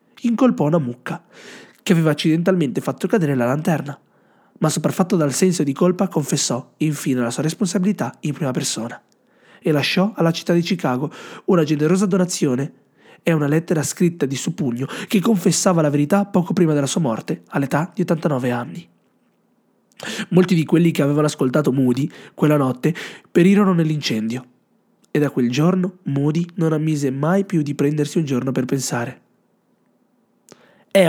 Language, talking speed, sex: Italian, 155 wpm, male